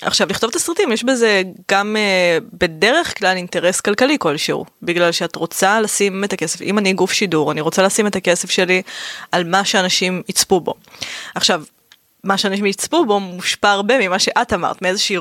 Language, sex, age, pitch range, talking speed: Hebrew, female, 20-39, 185-230 Hz, 180 wpm